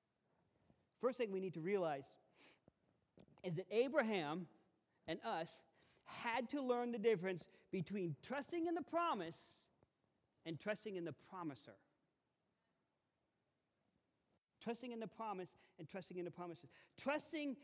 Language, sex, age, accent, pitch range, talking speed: English, male, 40-59, American, 170-240 Hz, 125 wpm